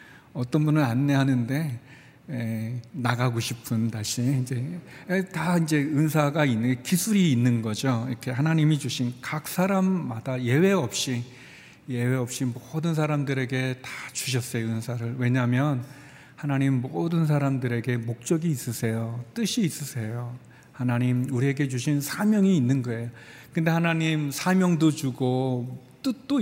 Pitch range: 120-155 Hz